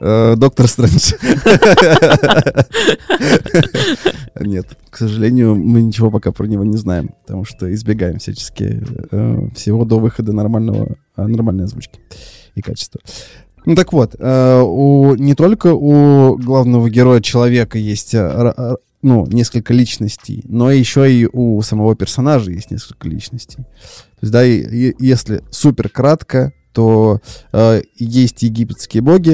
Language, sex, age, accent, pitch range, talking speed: Russian, male, 20-39, native, 105-125 Hz, 105 wpm